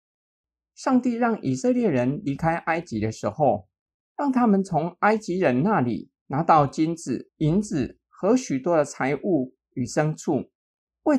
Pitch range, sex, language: 130-205 Hz, male, Chinese